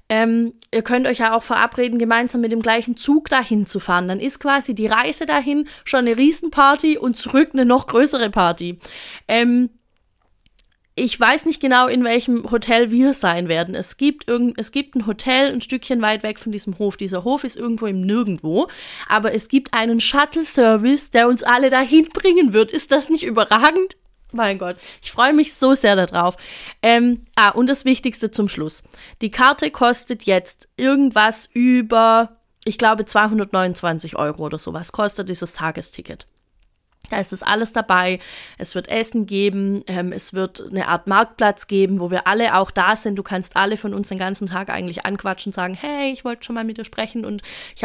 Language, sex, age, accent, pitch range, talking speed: German, female, 30-49, German, 195-250 Hz, 185 wpm